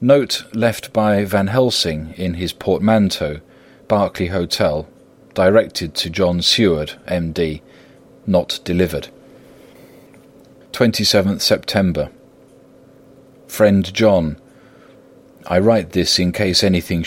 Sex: male